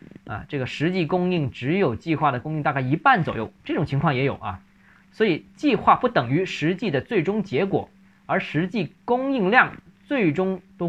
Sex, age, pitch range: male, 20-39, 135-185 Hz